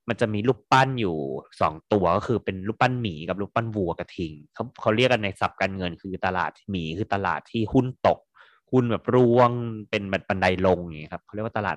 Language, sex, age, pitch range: Thai, male, 20-39, 90-120 Hz